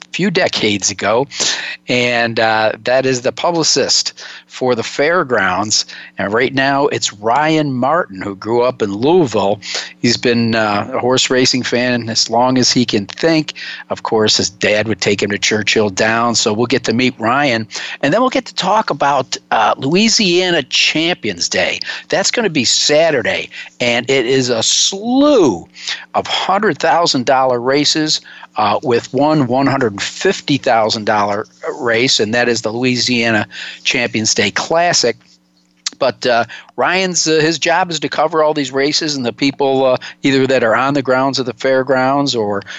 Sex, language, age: male, English, 50-69